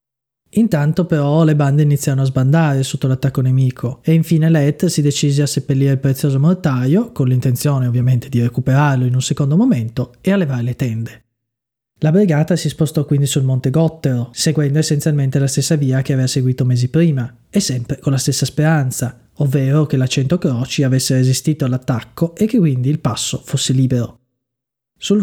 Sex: male